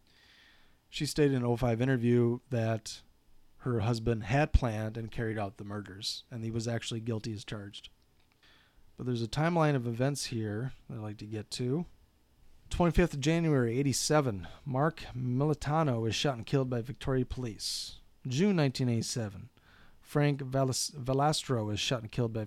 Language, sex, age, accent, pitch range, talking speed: English, male, 30-49, American, 110-135 Hz, 160 wpm